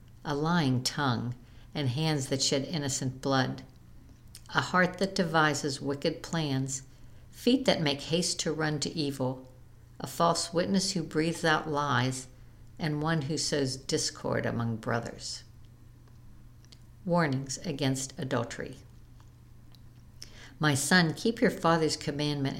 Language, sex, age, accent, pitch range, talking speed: English, female, 60-79, American, 125-165 Hz, 120 wpm